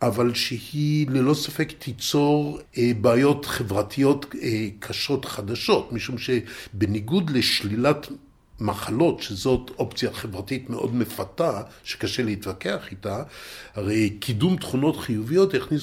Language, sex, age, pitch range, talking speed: Hebrew, male, 60-79, 115-140 Hz, 100 wpm